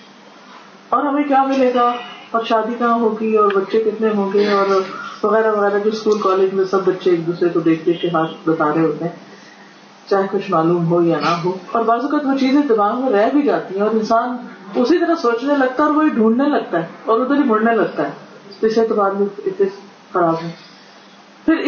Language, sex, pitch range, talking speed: Urdu, female, 190-245 Hz, 175 wpm